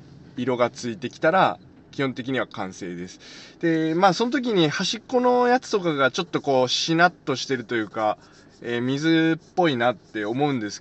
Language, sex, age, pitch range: Japanese, male, 20-39, 120-170 Hz